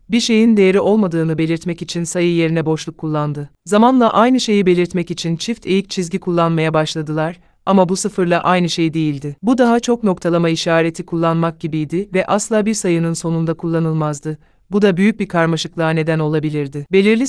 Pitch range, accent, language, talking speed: 160-195 Hz, Turkish, Polish, 165 wpm